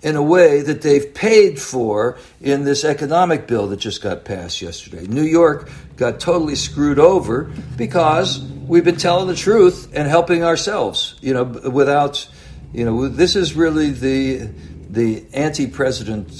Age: 60-79